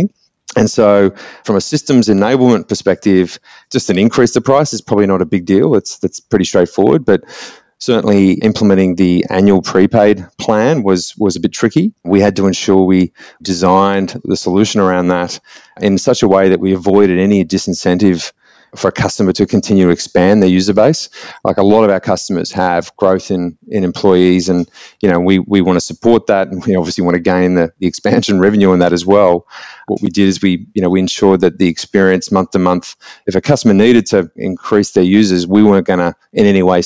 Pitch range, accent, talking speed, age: 90-100 Hz, Australian, 205 wpm, 30-49